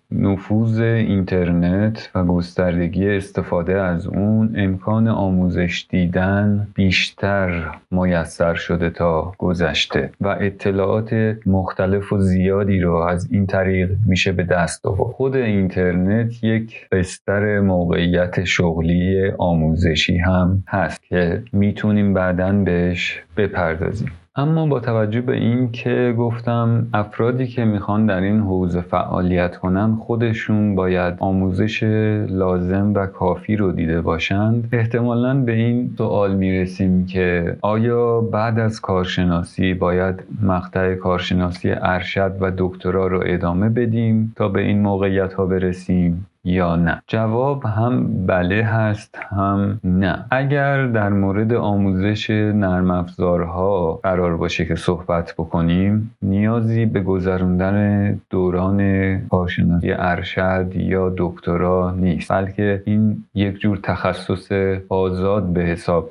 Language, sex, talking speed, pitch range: Persian, male, 115 wpm, 90-105 Hz